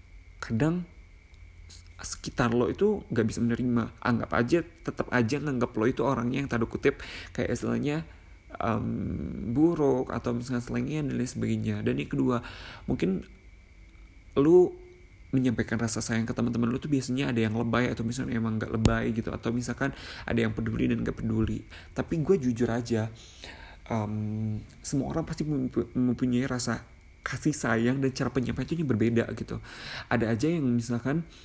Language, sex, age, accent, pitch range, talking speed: Indonesian, male, 30-49, native, 110-130 Hz, 150 wpm